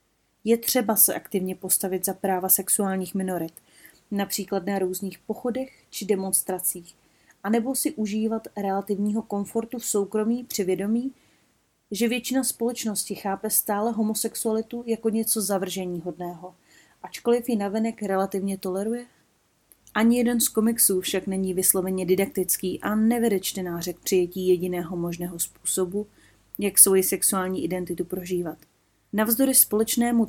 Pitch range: 185-230 Hz